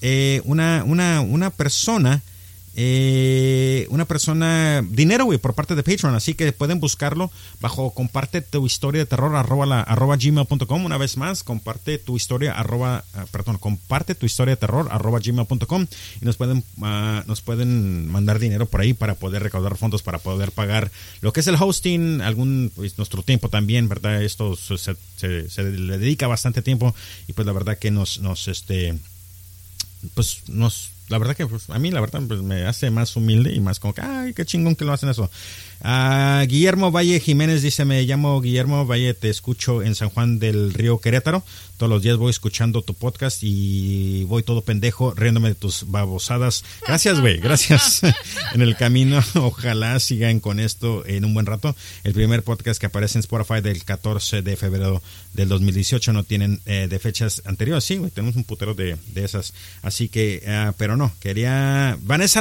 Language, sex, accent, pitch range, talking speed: Spanish, male, Mexican, 105-135 Hz, 180 wpm